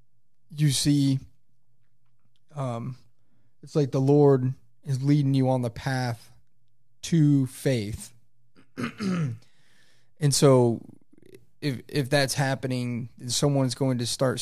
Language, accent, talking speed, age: English, American, 105 wpm, 30-49